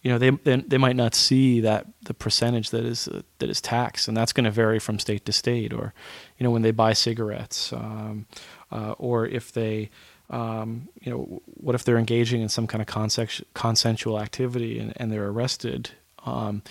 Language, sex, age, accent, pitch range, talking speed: English, male, 30-49, American, 105-125 Hz, 200 wpm